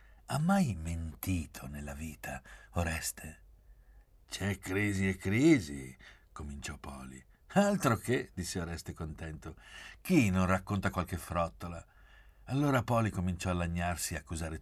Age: 60-79